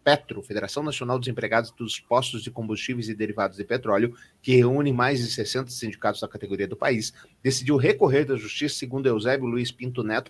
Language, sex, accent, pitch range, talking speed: Portuguese, male, Brazilian, 120-160 Hz, 185 wpm